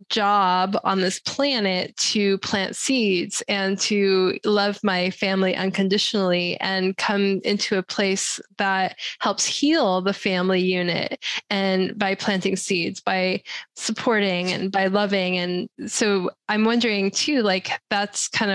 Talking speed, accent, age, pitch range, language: 135 wpm, American, 10-29, 190-210 Hz, English